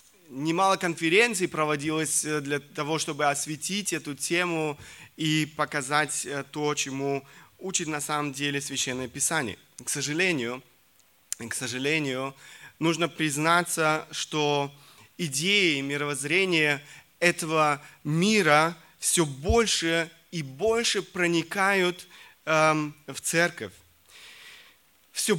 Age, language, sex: 20-39, Russian, male